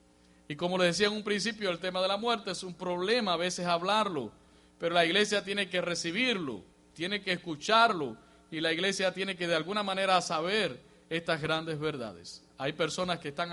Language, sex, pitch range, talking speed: English, male, 145-185 Hz, 190 wpm